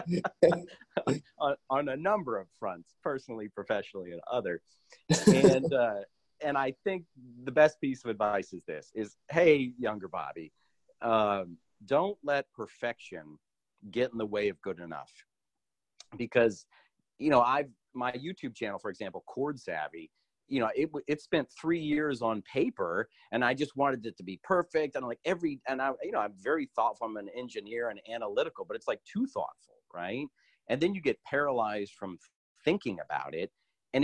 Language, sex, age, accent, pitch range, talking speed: English, male, 40-59, American, 105-145 Hz, 170 wpm